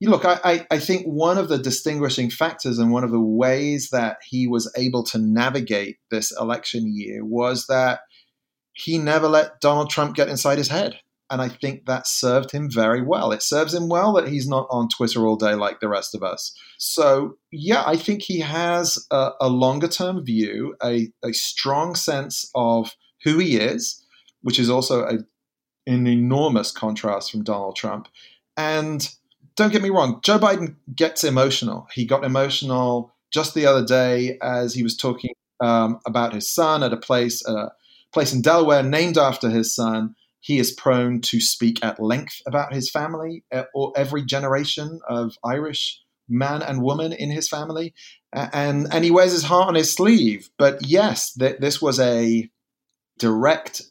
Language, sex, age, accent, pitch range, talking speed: English, male, 30-49, British, 120-155 Hz, 180 wpm